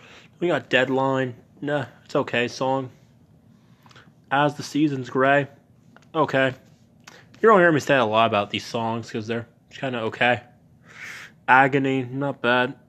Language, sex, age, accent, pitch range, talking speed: English, male, 20-39, American, 120-145 Hz, 140 wpm